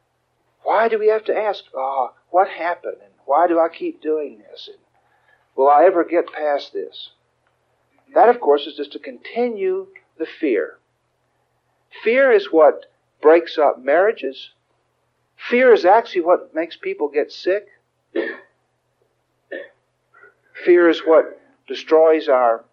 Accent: American